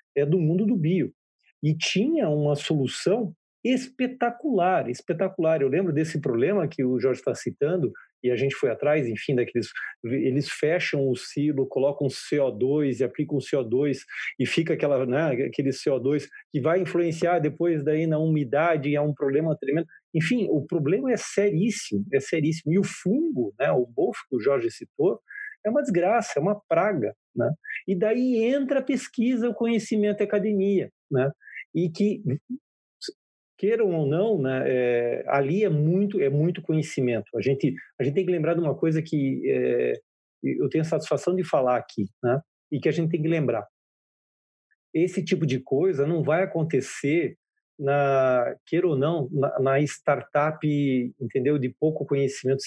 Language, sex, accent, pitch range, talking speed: Portuguese, male, Brazilian, 140-200 Hz, 165 wpm